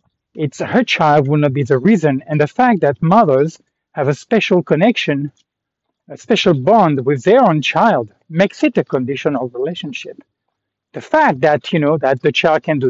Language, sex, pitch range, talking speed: English, male, 140-195 Hz, 180 wpm